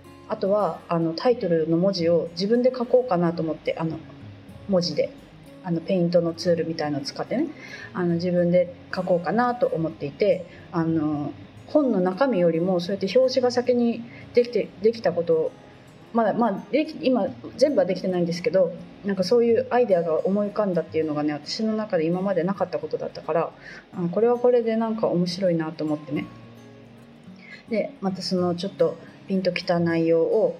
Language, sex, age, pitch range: Japanese, female, 30-49, 165-200 Hz